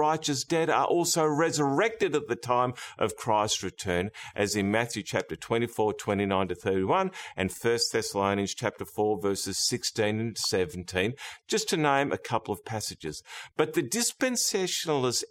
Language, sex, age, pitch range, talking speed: English, male, 50-69, 115-170 Hz, 150 wpm